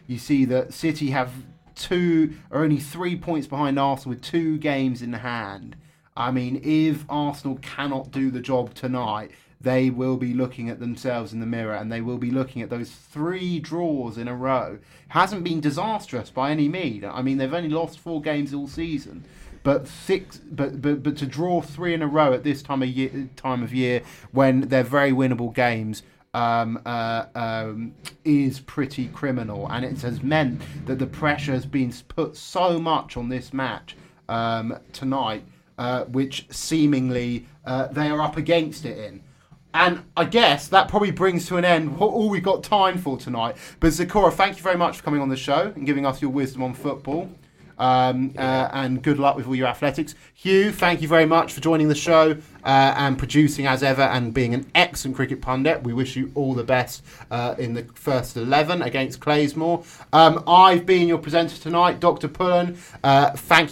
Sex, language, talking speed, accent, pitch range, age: male, English, 195 wpm, British, 130-165 Hz, 20-39